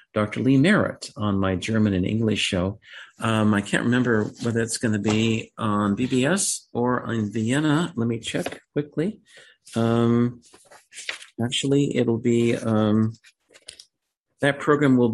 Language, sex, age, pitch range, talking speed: English, male, 50-69, 100-125 Hz, 140 wpm